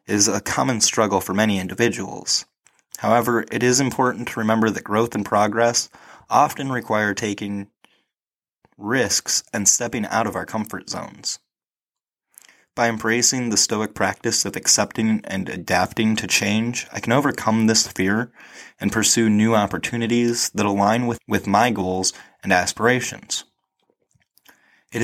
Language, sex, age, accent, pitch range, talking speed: English, male, 20-39, American, 100-120 Hz, 135 wpm